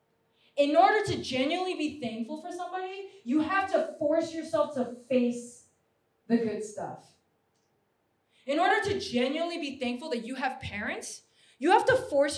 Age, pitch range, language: 20-39, 240-340 Hz, English